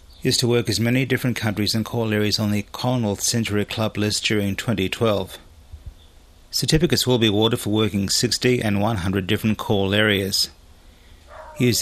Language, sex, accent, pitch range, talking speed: English, male, Australian, 95-115 Hz, 155 wpm